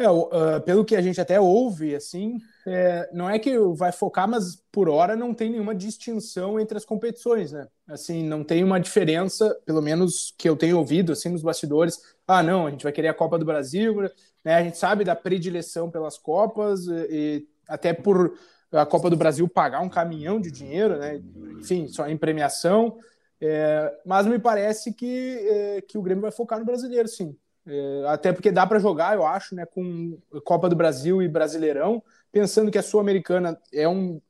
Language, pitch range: Portuguese, 160-205 Hz